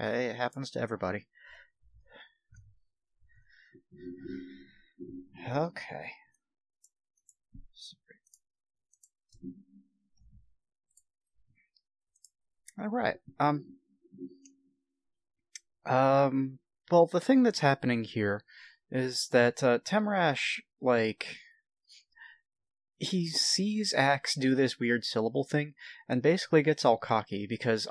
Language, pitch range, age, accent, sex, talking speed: English, 105-140 Hz, 30-49, American, male, 75 wpm